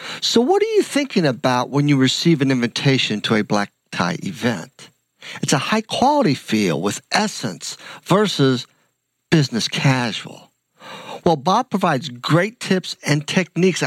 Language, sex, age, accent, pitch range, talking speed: English, male, 60-79, American, 135-190 Hz, 145 wpm